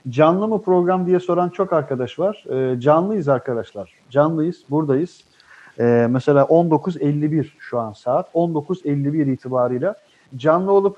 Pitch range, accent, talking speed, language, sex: 130-170 Hz, native, 125 wpm, Turkish, male